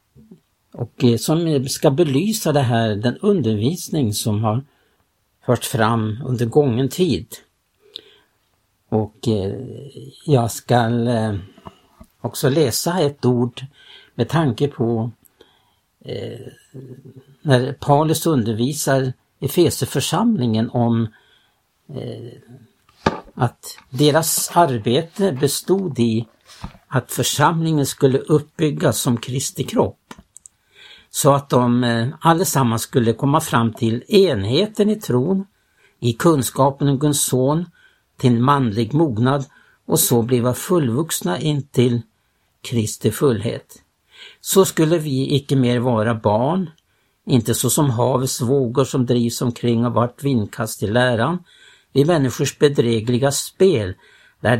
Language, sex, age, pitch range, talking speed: Swedish, male, 60-79, 120-150 Hz, 105 wpm